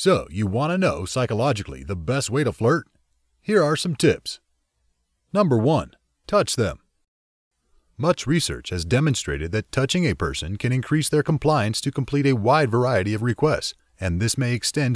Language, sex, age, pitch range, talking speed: English, male, 30-49, 95-145 Hz, 170 wpm